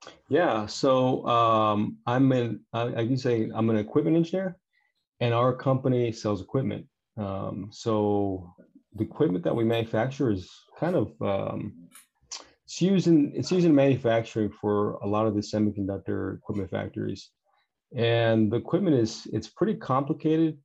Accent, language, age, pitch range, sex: American, Chinese, 30-49, 105-125 Hz, male